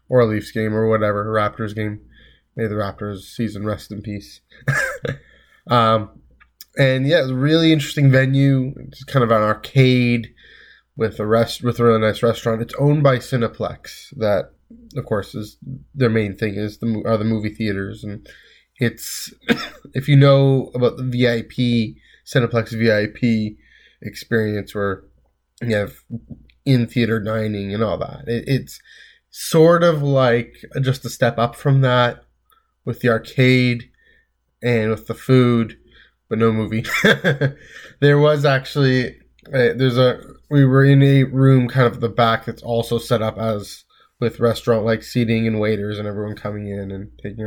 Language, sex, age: English, male, 20-39